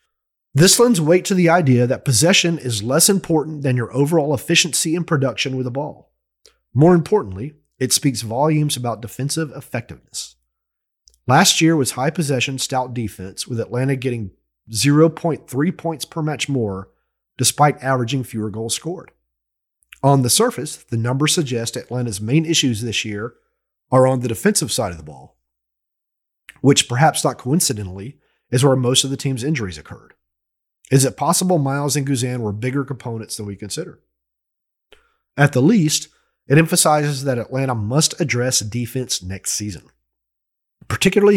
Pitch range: 115-150 Hz